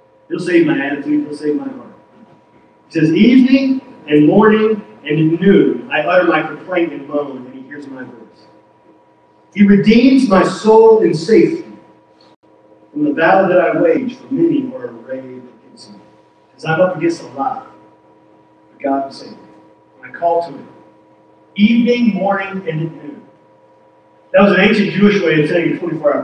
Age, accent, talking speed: 40-59, American, 175 wpm